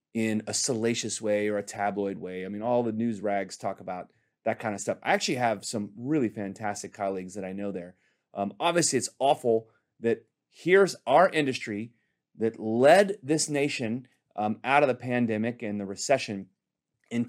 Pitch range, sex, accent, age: 100-125 Hz, male, American, 30-49